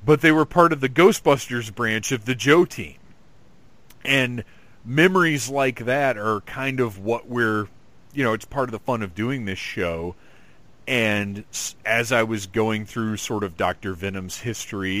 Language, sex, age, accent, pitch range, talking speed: English, male, 40-59, American, 100-125 Hz, 170 wpm